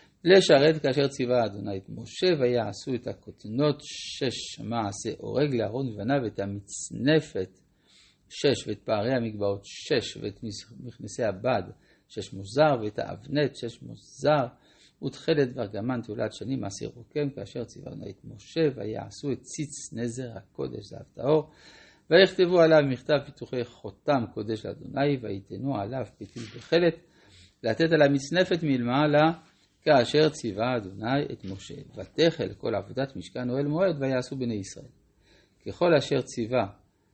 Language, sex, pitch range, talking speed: Hebrew, male, 110-150 Hz, 130 wpm